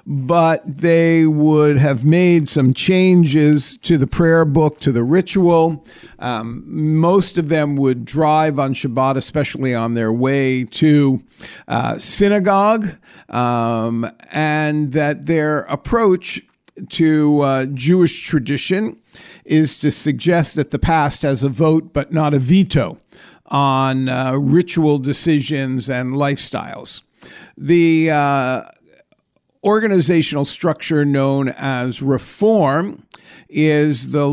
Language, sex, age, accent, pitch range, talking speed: English, male, 50-69, American, 135-165 Hz, 115 wpm